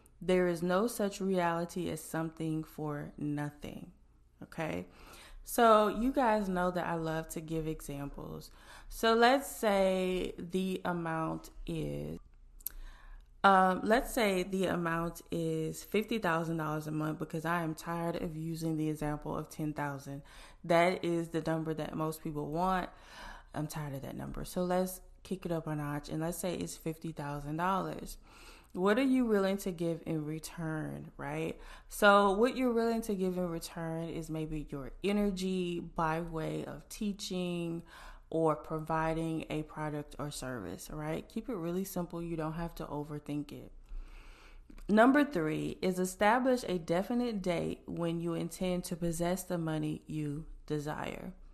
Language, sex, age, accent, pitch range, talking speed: English, female, 20-39, American, 150-185 Hz, 150 wpm